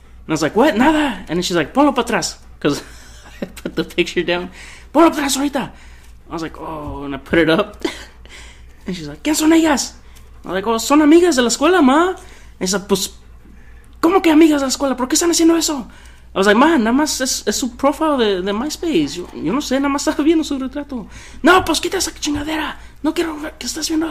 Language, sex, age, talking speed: English, male, 20-39, 235 wpm